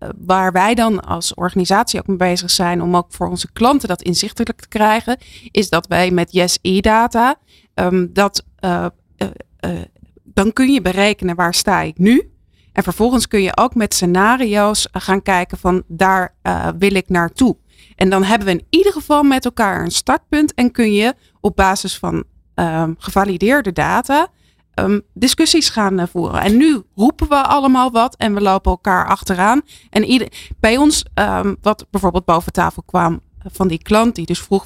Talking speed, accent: 165 wpm, Dutch